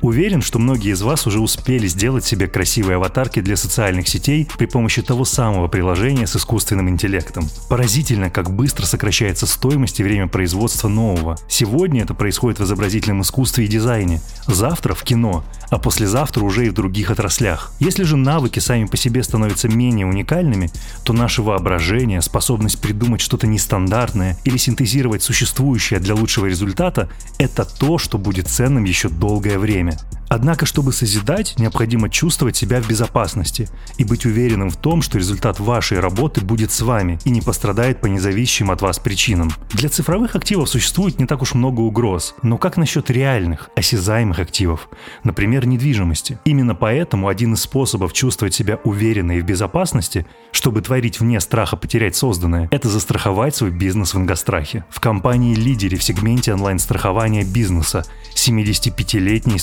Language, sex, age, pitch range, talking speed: Russian, male, 20-39, 100-125 Hz, 155 wpm